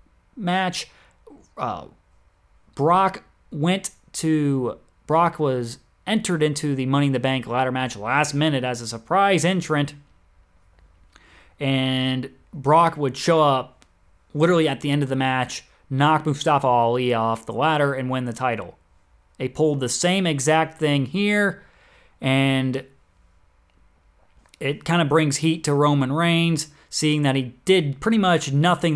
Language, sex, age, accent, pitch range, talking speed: English, male, 30-49, American, 125-165 Hz, 140 wpm